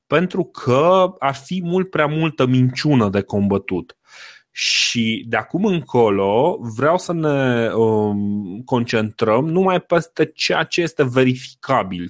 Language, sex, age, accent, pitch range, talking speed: Romanian, male, 20-39, native, 110-150 Hz, 120 wpm